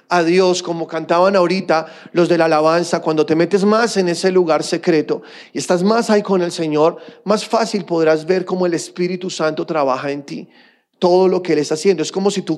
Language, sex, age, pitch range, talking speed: Spanish, male, 30-49, 145-180 Hz, 215 wpm